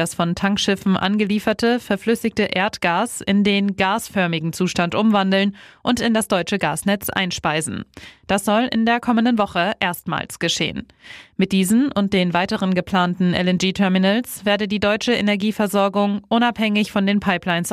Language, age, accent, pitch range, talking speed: German, 30-49, German, 185-220 Hz, 135 wpm